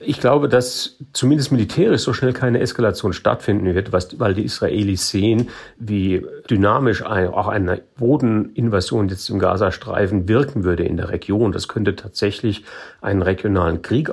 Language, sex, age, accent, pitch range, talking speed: German, male, 40-59, German, 95-120 Hz, 145 wpm